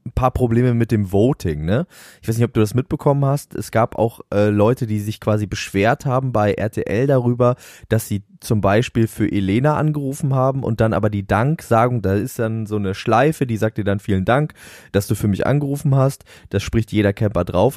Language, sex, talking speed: German, male, 220 wpm